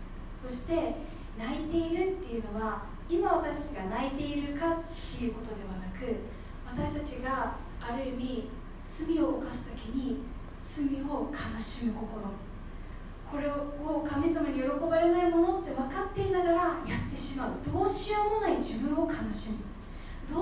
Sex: female